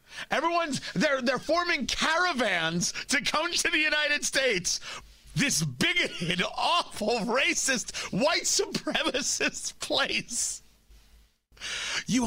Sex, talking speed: male, 90 wpm